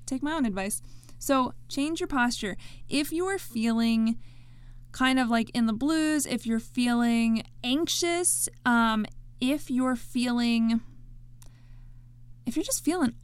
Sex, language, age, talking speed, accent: female, English, 20-39, 135 wpm, American